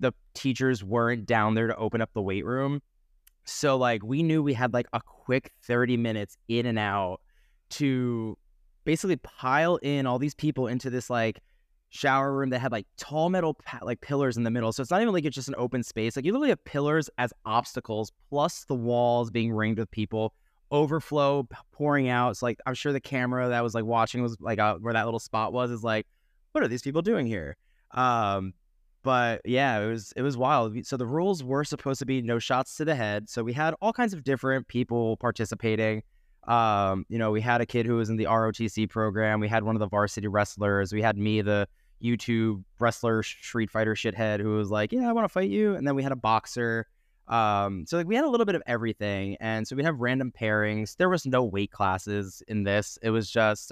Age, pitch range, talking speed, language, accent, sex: 20-39, 110-140 Hz, 225 wpm, English, American, male